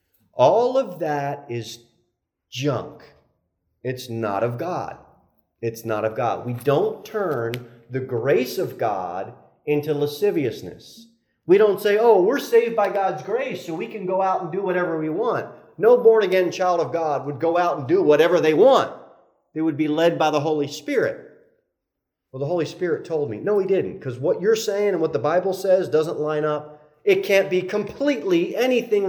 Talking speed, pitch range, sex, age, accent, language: 180 wpm, 115-175 Hz, male, 40-59, American, English